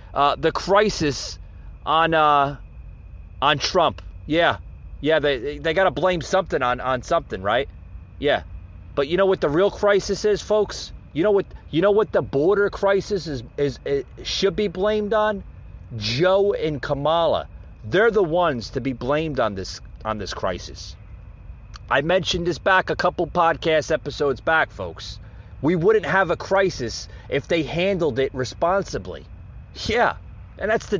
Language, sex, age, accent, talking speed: English, male, 30-49, American, 160 wpm